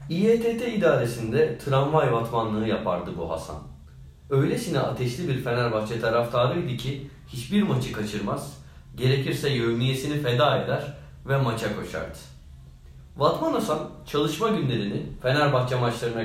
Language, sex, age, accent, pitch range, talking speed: Turkish, male, 40-59, native, 105-140 Hz, 105 wpm